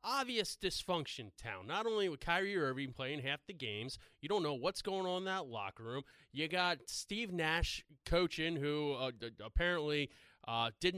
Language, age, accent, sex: English, 30-49, American, male